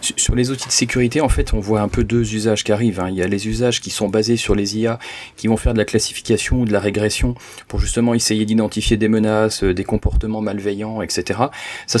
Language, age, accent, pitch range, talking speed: French, 40-59, French, 105-120 Hz, 235 wpm